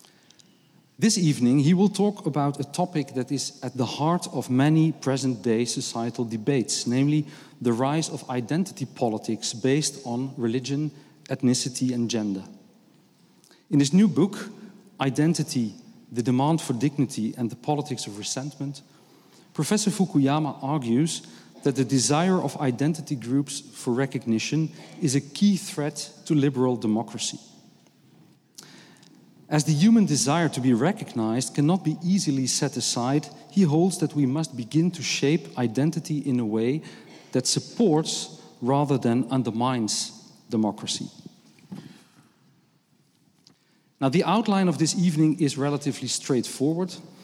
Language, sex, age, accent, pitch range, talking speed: Dutch, male, 40-59, Dutch, 125-160 Hz, 130 wpm